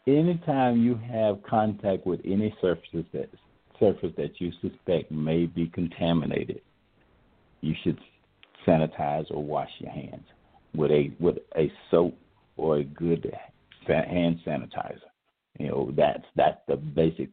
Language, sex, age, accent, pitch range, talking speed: English, male, 50-69, American, 80-90 Hz, 130 wpm